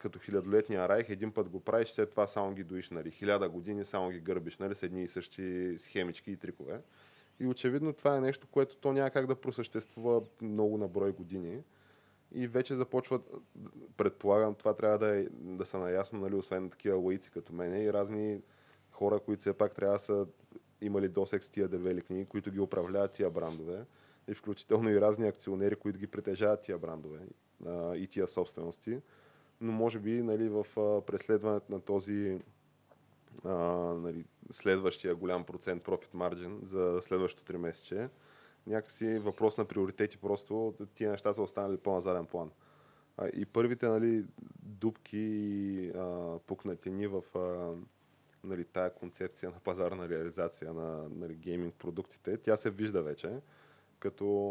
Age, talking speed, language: 20-39, 160 wpm, Bulgarian